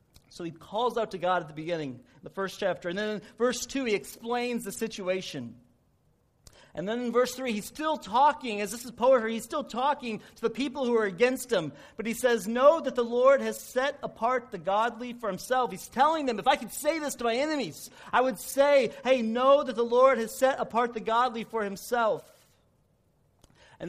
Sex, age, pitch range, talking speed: male, 40-59, 205-265 Hz, 210 wpm